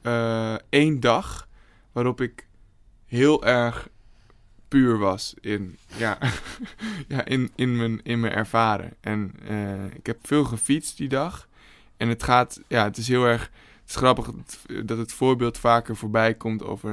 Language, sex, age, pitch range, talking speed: Dutch, male, 20-39, 105-125 Hz, 160 wpm